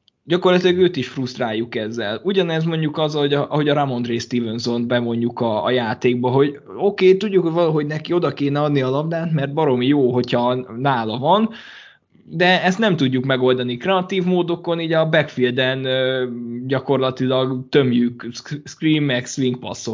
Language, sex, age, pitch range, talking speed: Hungarian, male, 20-39, 125-155 Hz, 145 wpm